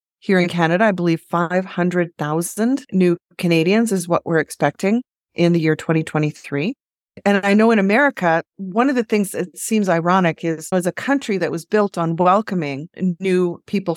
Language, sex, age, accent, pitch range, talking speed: English, female, 30-49, American, 165-205 Hz, 170 wpm